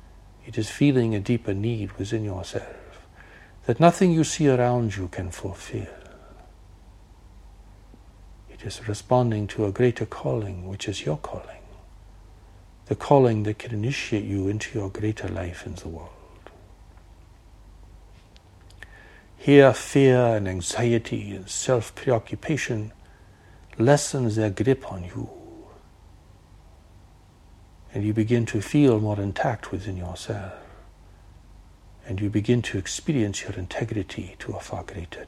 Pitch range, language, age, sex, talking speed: 90-110 Hz, English, 60-79, male, 120 wpm